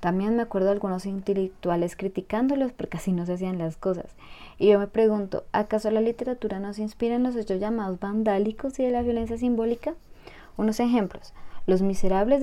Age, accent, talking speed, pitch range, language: 20-39, Colombian, 185 wpm, 190-225 Hz, Spanish